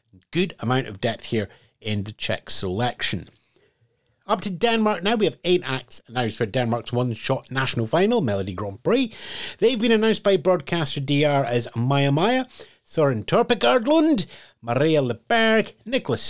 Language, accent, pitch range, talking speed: English, British, 110-155 Hz, 145 wpm